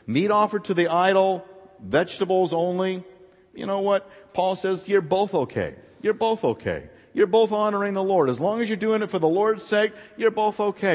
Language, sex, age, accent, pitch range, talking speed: English, male, 50-69, American, 130-185 Hz, 195 wpm